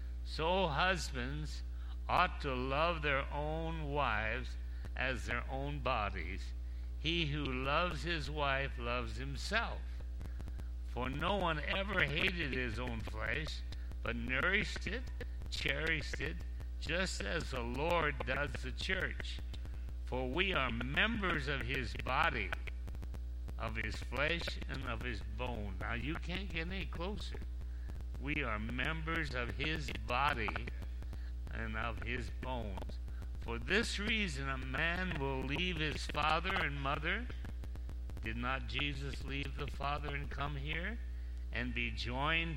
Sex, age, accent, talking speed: male, 60-79, American, 130 wpm